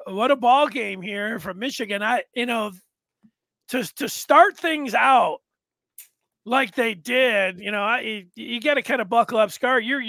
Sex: male